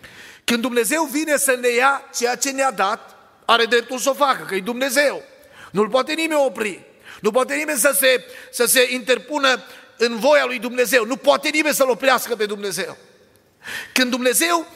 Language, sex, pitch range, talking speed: Romanian, male, 215-260 Hz, 175 wpm